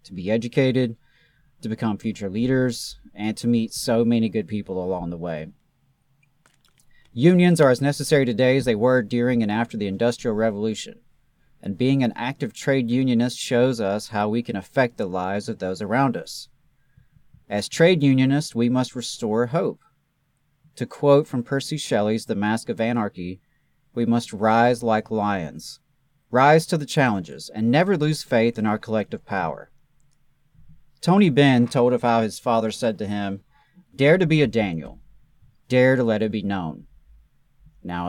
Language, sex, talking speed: English, male, 165 wpm